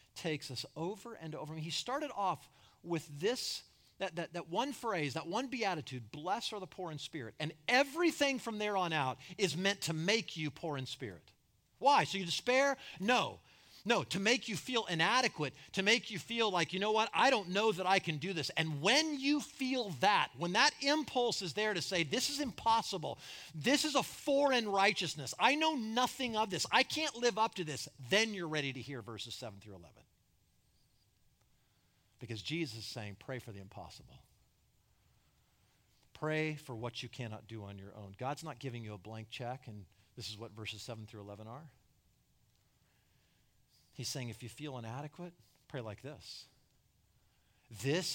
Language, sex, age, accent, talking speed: English, male, 40-59, American, 185 wpm